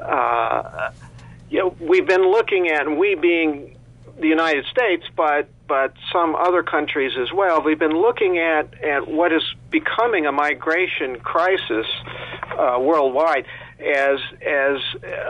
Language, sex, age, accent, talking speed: English, male, 50-69, American, 150 wpm